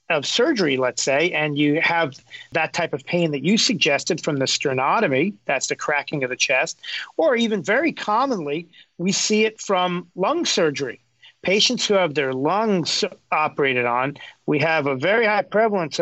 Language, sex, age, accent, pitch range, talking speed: English, male, 40-59, American, 155-210 Hz, 170 wpm